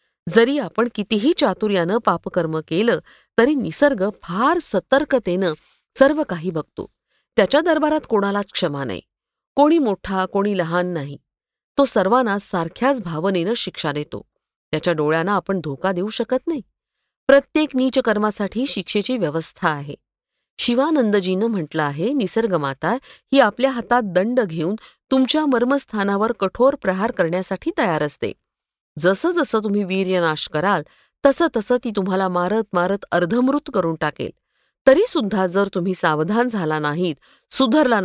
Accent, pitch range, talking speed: native, 180-260 Hz, 125 wpm